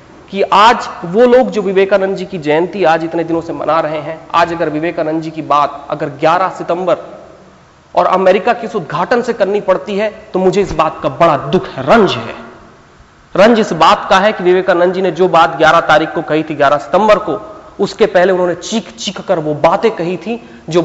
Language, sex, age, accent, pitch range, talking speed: Hindi, male, 30-49, native, 160-195 Hz, 215 wpm